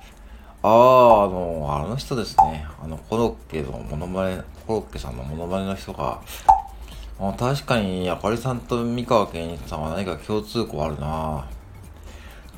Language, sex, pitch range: Japanese, male, 75-100 Hz